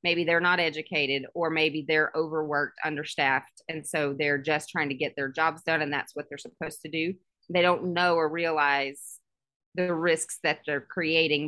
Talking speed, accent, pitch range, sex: 190 wpm, American, 145-170 Hz, female